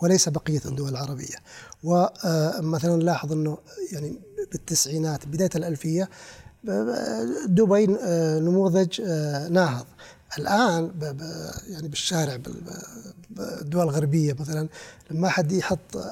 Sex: male